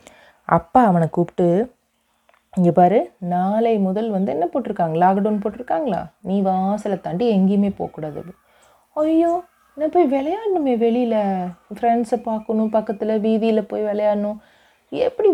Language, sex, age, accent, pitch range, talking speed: Tamil, female, 30-49, native, 170-235 Hz, 115 wpm